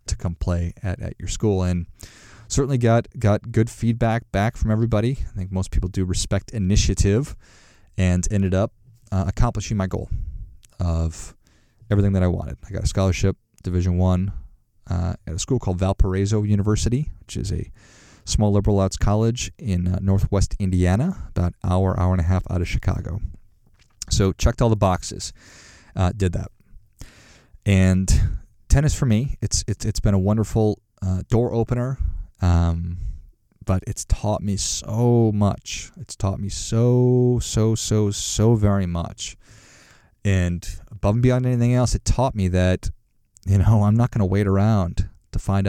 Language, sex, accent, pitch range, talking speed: English, male, American, 90-110 Hz, 165 wpm